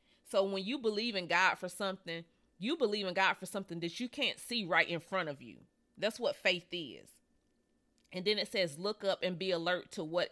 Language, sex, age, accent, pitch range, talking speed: English, female, 30-49, American, 165-205 Hz, 220 wpm